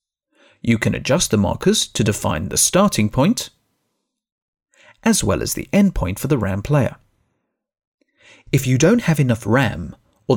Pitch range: 110-175 Hz